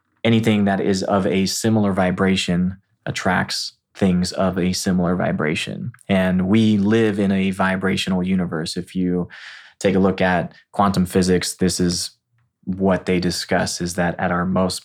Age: 20-39